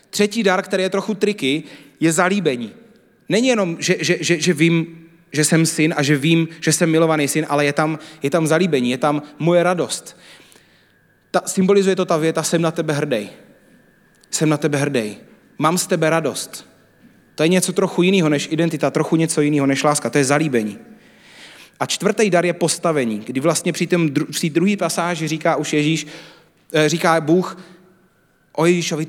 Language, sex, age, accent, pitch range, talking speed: Czech, male, 30-49, native, 145-175 Hz, 175 wpm